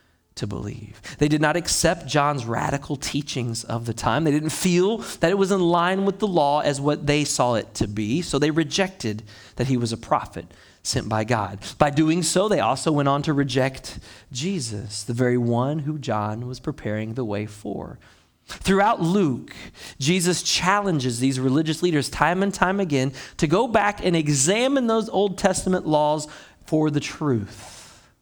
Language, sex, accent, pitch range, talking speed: English, male, American, 120-175 Hz, 180 wpm